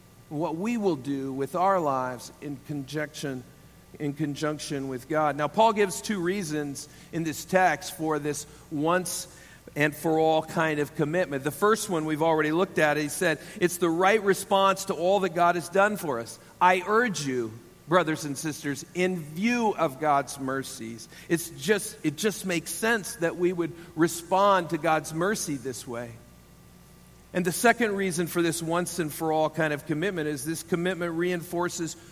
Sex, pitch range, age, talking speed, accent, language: male, 145-180 Hz, 50-69, 170 wpm, American, English